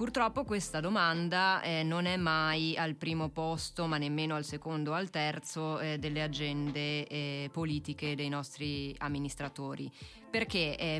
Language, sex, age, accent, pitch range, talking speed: Italian, female, 20-39, native, 150-170 Hz, 145 wpm